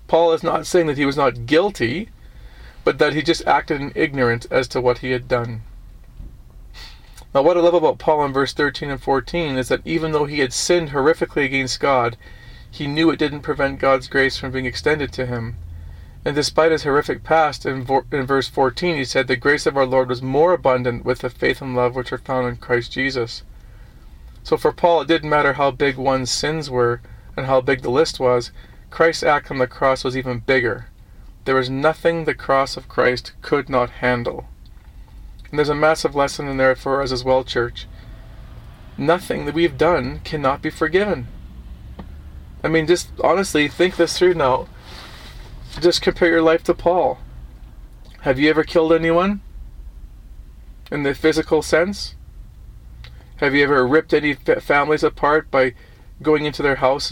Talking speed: 180 wpm